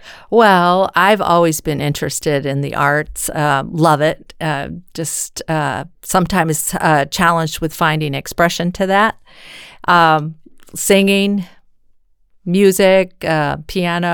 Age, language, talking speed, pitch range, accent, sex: 50-69, Finnish, 115 wpm, 155-200 Hz, American, female